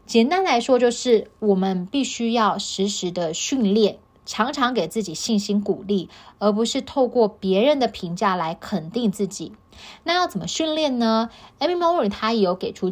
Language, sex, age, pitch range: Chinese, female, 20-39, 185-235 Hz